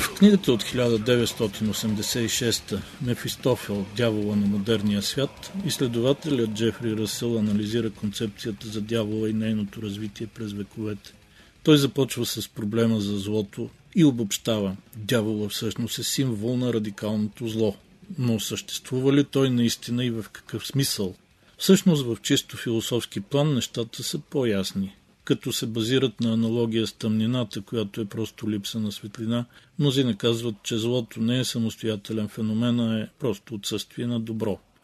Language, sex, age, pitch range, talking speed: Bulgarian, male, 50-69, 105-125 Hz, 140 wpm